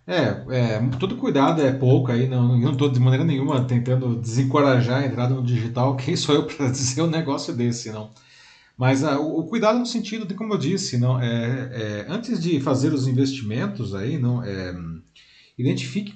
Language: Portuguese